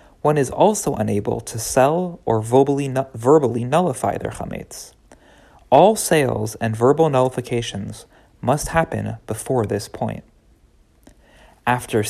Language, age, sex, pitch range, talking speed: English, 30-49, male, 110-145 Hz, 115 wpm